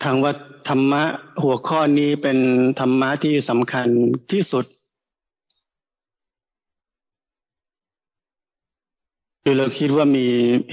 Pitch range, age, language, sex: 125-145 Hz, 60-79, Thai, male